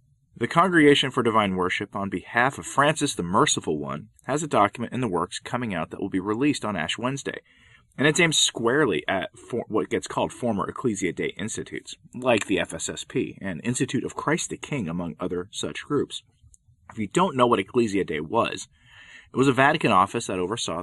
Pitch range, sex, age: 95-130 Hz, male, 30-49